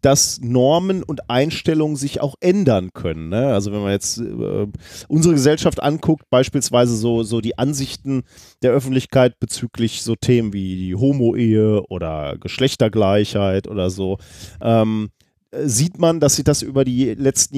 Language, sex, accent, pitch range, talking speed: German, male, German, 105-150 Hz, 145 wpm